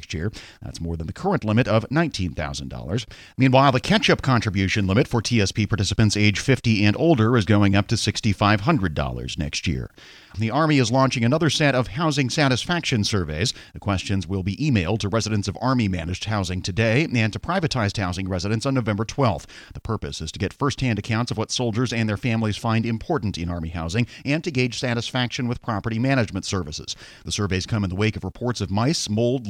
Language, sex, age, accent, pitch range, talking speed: English, male, 40-59, American, 100-130 Hz, 195 wpm